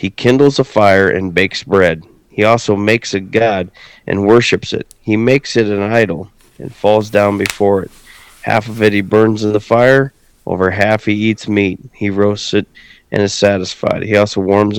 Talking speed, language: 190 wpm, English